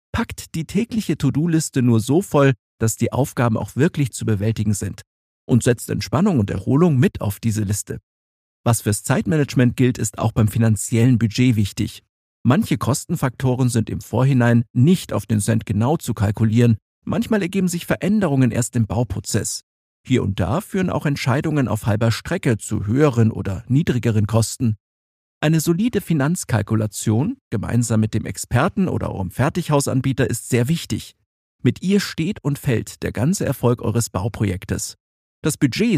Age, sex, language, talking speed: 50-69, male, German, 155 wpm